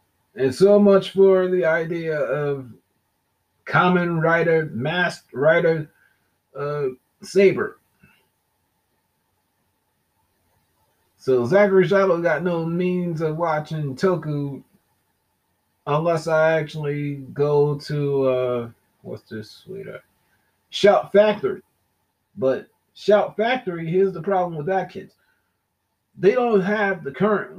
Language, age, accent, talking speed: English, 30-49, American, 105 wpm